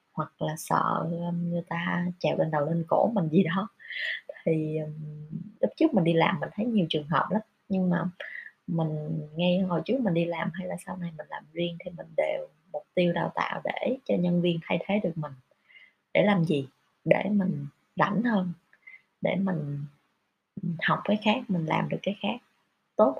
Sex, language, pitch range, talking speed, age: female, Vietnamese, 165-210 Hz, 190 wpm, 20-39